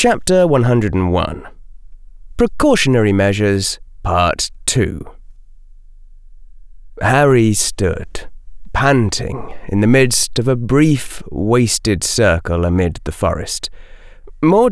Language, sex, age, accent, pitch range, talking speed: English, male, 30-49, British, 85-125 Hz, 85 wpm